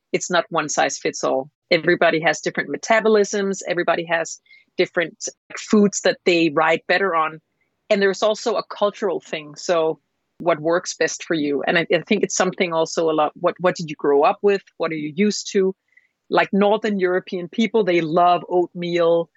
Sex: female